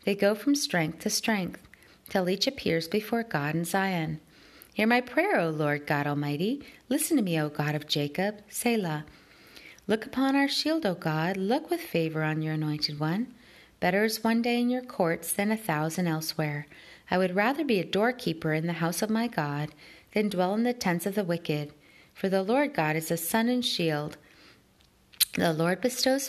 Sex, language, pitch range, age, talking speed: female, English, 160-230 Hz, 30-49, 190 wpm